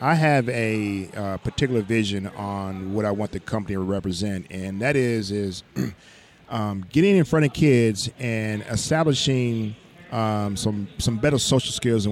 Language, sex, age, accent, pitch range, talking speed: English, male, 40-59, American, 110-135 Hz, 165 wpm